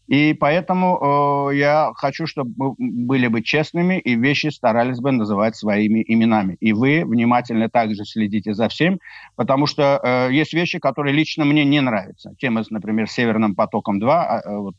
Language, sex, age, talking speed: Ukrainian, male, 50-69, 160 wpm